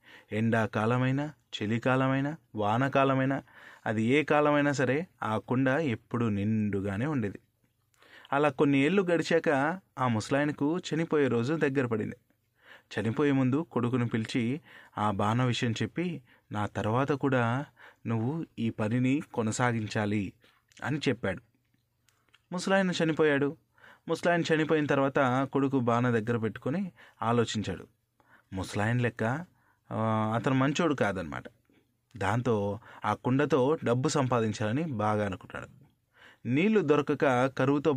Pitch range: 115-145 Hz